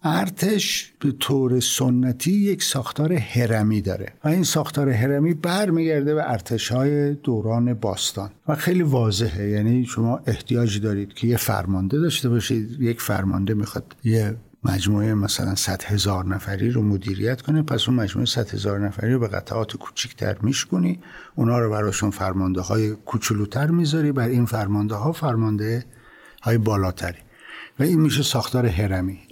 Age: 50-69